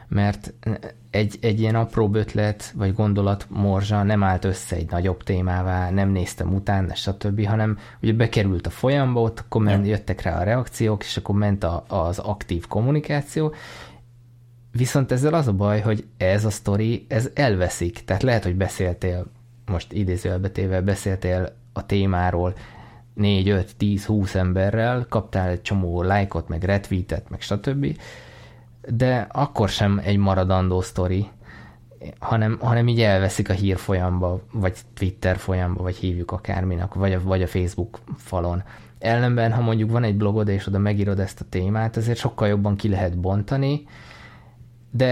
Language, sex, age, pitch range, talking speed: Hungarian, male, 20-39, 95-115 Hz, 145 wpm